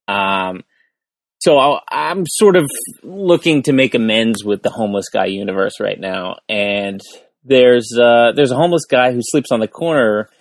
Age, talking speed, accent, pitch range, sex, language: 30-49, 165 wpm, American, 100-130 Hz, male, English